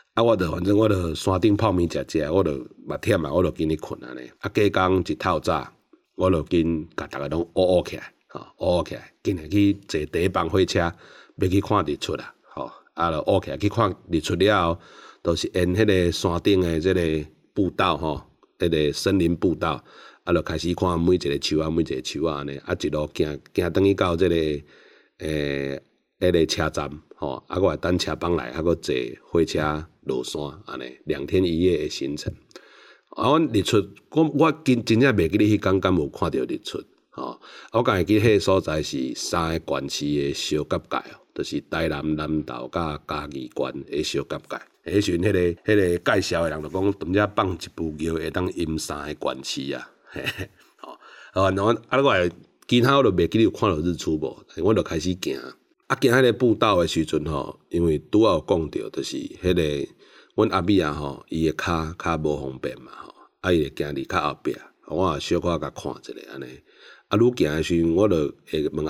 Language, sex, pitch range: Chinese, male, 80-95 Hz